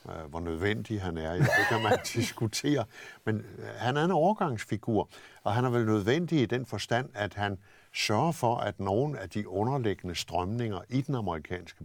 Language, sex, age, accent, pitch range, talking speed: Danish, male, 60-79, native, 90-120 Hz, 170 wpm